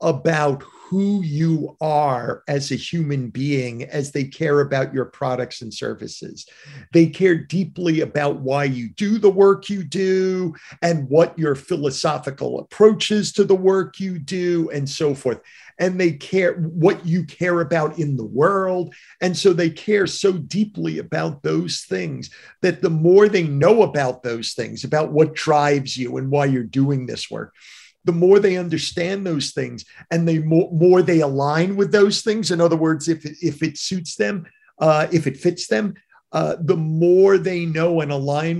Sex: male